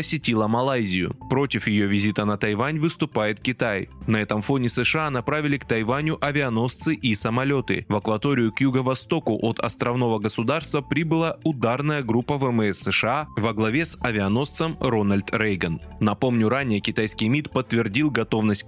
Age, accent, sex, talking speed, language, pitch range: 20-39, native, male, 140 wpm, Russian, 110-150 Hz